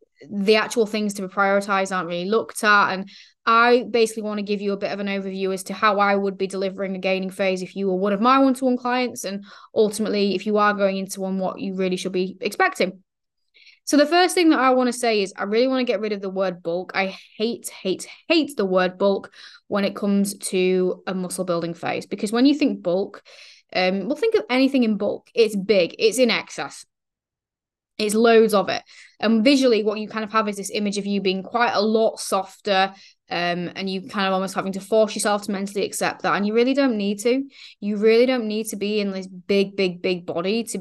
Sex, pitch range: female, 190-230 Hz